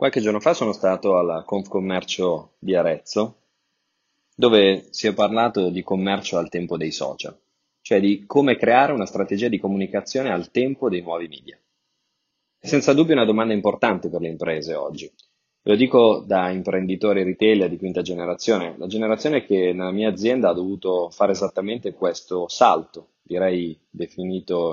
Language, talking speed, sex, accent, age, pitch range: Italian, 160 wpm, male, native, 20-39, 90-110 Hz